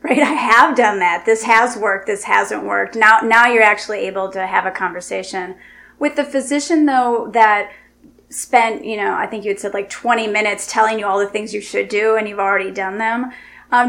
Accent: American